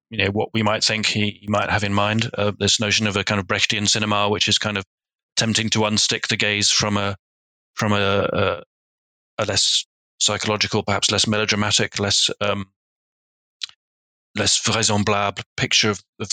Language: English